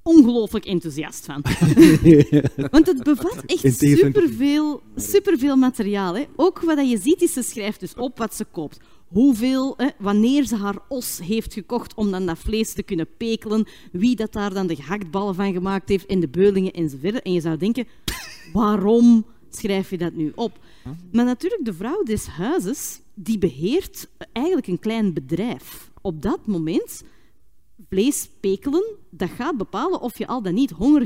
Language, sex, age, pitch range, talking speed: Dutch, female, 30-49, 180-270 Hz, 165 wpm